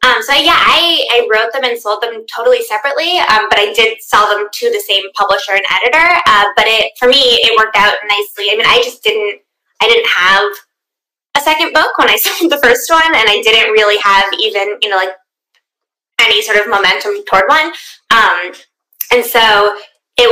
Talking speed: 200 wpm